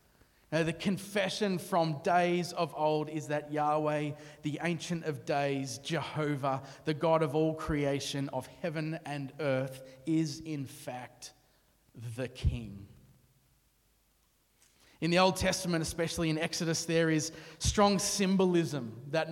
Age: 30-49